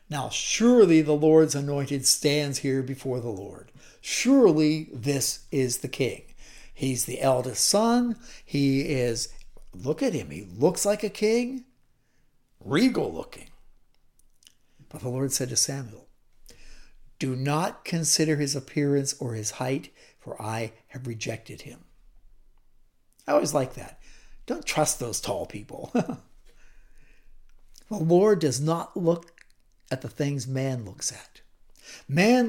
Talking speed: 130 wpm